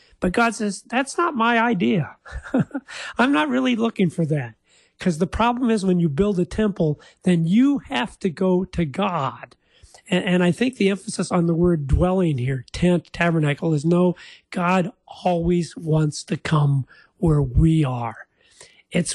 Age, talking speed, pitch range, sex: 40-59, 165 wpm, 155-190 Hz, male